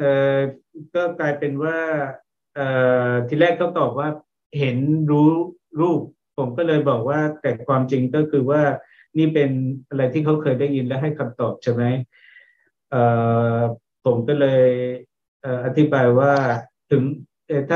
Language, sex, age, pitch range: Thai, male, 60-79, 120-145 Hz